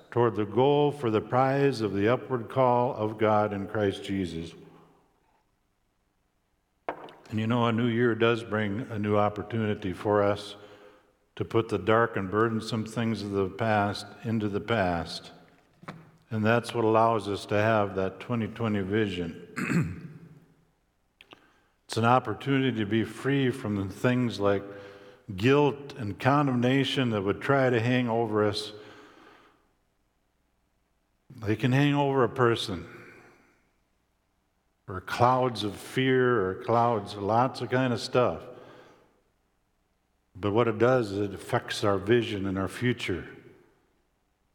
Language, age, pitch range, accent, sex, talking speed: English, 60-79, 100-125 Hz, American, male, 135 wpm